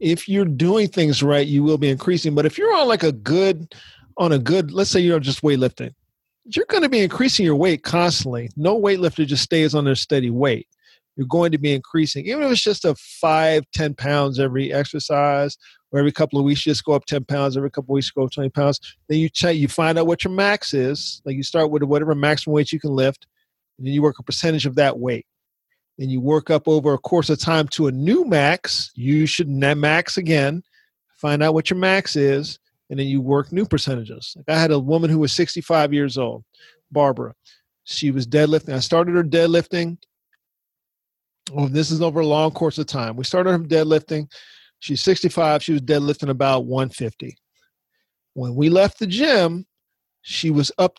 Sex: male